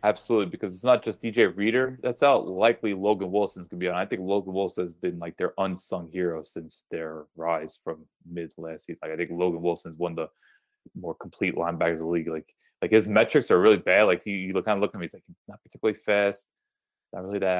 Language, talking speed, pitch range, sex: English, 230 wpm, 85-110 Hz, male